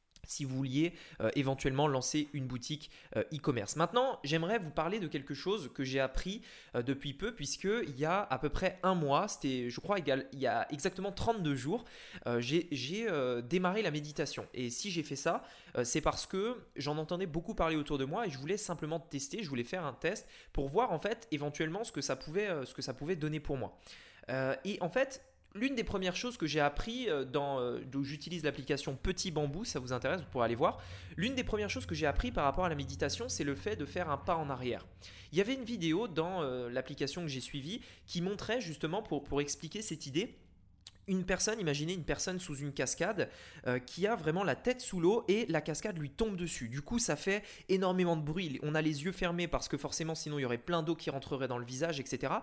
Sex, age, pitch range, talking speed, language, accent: male, 20-39, 140-190 Hz, 230 wpm, French, French